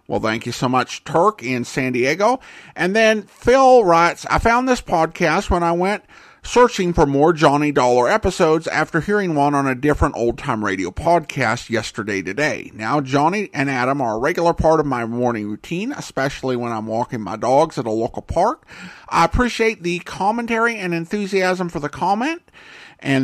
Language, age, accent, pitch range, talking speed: English, 50-69, American, 135-190 Hz, 180 wpm